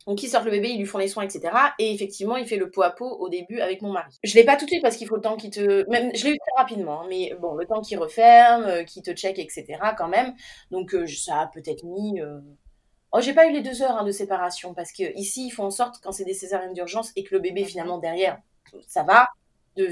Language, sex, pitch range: French, female, 185-240 Hz